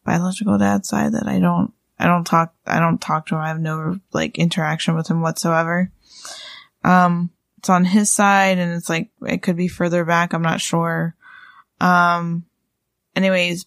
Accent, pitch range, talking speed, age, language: American, 170-210 Hz, 175 wpm, 10-29, English